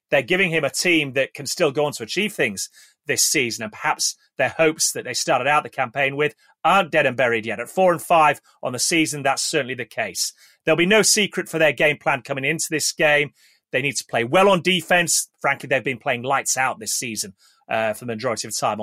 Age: 30-49